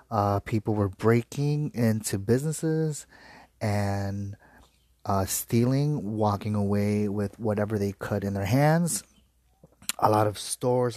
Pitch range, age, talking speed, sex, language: 100-115 Hz, 30-49, 120 wpm, male, English